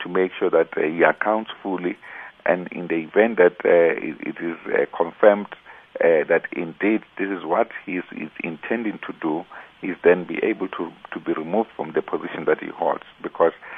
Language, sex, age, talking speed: English, male, 50-69, 195 wpm